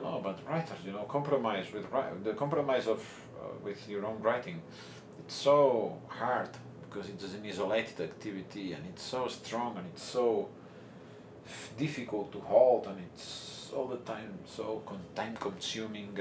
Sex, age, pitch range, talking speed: male, 40-59, 95-115 Hz, 155 wpm